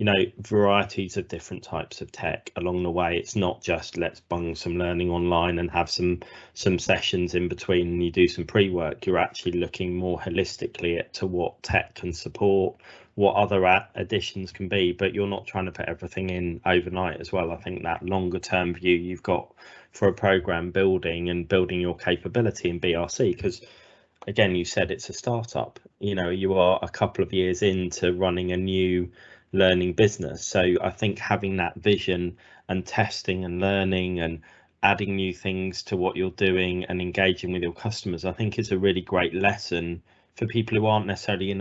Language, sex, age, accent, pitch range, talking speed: English, male, 20-39, British, 90-100 Hz, 190 wpm